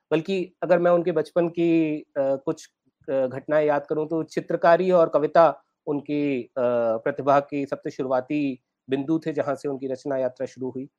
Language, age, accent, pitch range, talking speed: Hindi, 30-49, native, 135-165 Hz, 145 wpm